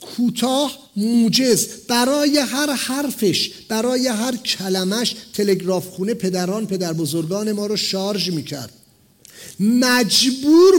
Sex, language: male, English